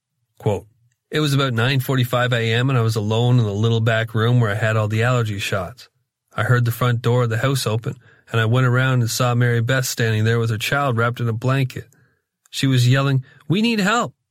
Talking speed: 225 wpm